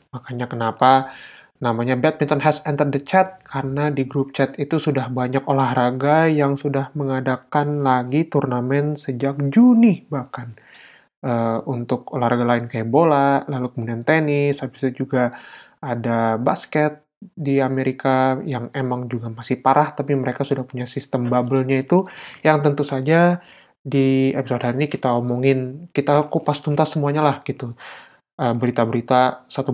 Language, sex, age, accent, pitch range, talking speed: Indonesian, male, 20-39, native, 125-145 Hz, 140 wpm